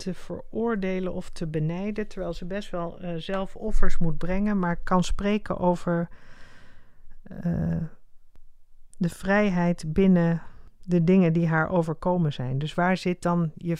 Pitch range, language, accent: 160-180 Hz, Dutch, Dutch